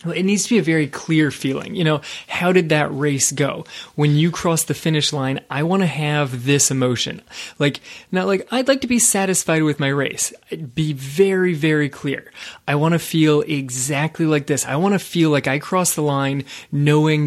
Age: 30-49